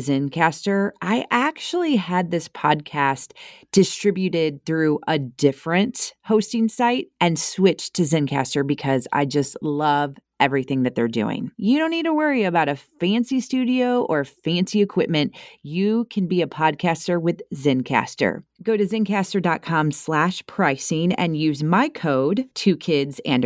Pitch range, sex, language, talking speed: 150-215 Hz, female, English, 140 wpm